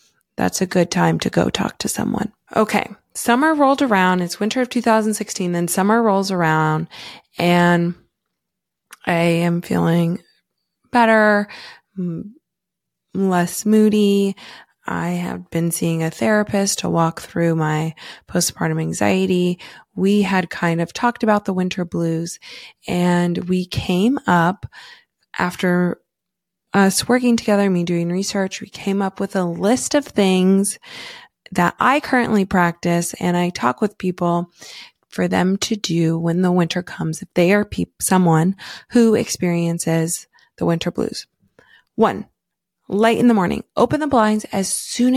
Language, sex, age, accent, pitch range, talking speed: English, female, 20-39, American, 175-215 Hz, 140 wpm